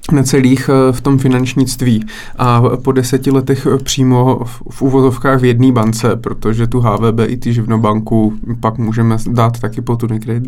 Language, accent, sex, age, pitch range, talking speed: Czech, native, male, 20-39, 115-130 Hz, 155 wpm